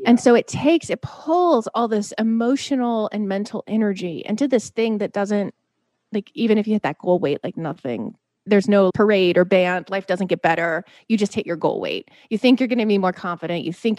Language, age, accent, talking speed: English, 30-49, American, 225 wpm